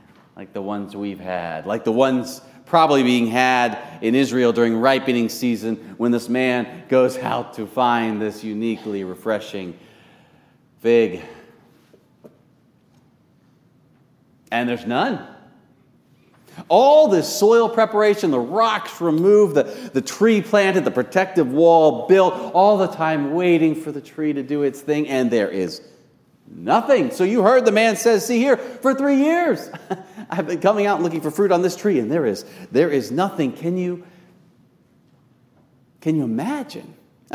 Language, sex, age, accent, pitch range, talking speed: English, male, 40-59, American, 120-200 Hz, 150 wpm